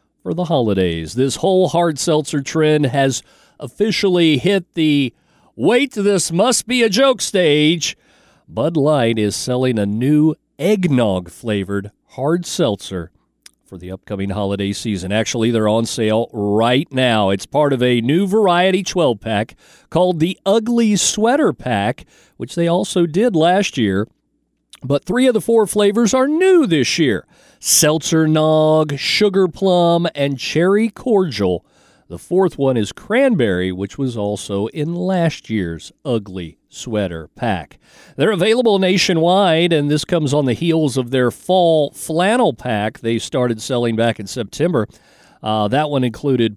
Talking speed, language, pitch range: 140 wpm, English, 110-175 Hz